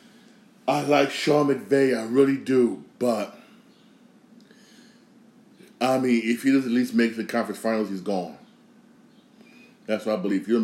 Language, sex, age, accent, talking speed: English, male, 20-39, American, 170 wpm